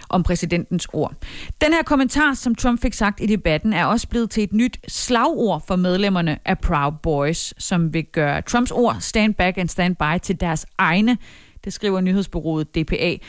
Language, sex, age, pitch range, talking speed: Danish, female, 30-49, 180-245 Hz, 185 wpm